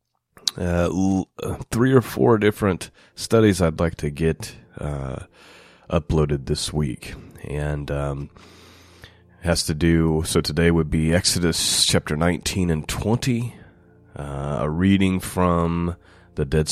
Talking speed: 135 wpm